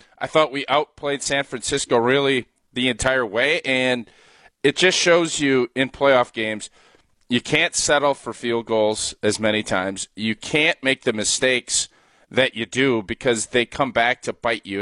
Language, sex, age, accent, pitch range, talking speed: English, male, 40-59, American, 120-150 Hz, 170 wpm